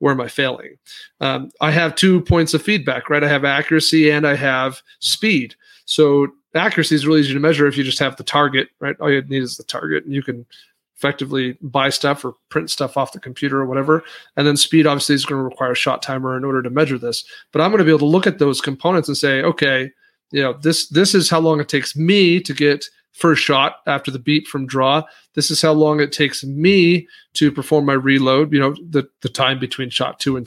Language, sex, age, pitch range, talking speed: English, male, 40-59, 135-160 Hz, 240 wpm